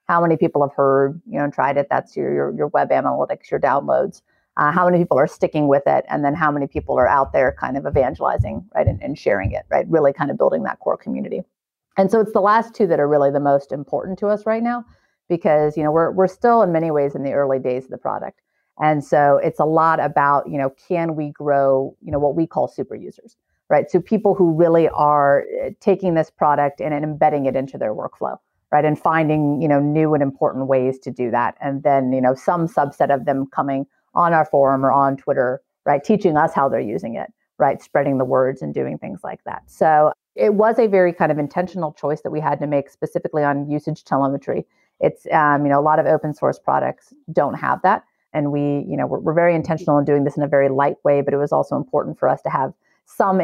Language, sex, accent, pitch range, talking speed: English, female, American, 140-170 Hz, 240 wpm